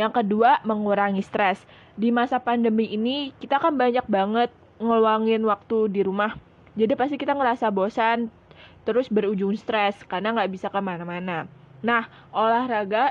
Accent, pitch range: native, 190-225 Hz